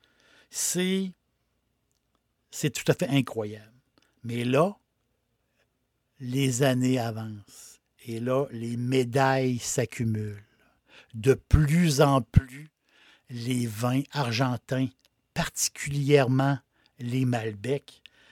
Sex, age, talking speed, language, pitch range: male, 60-79, 80 wpm, French, 125-160 Hz